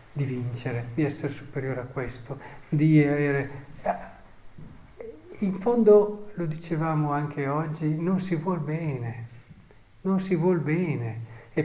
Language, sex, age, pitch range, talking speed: Italian, male, 50-69, 120-165 Hz, 125 wpm